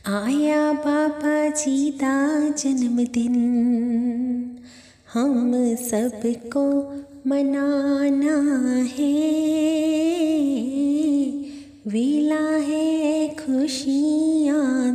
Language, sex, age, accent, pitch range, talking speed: Hindi, female, 20-39, native, 260-315 Hz, 50 wpm